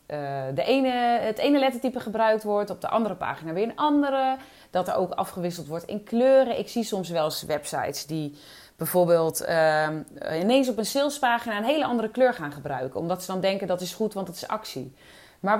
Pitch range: 170-235 Hz